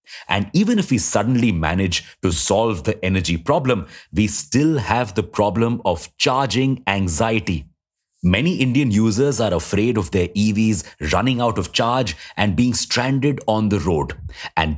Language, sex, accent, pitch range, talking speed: English, male, Indian, 90-125 Hz, 155 wpm